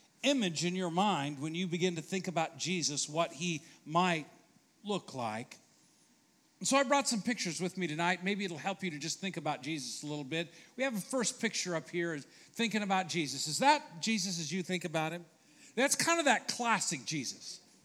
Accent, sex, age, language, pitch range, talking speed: American, male, 50-69, English, 160-220 Hz, 210 wpm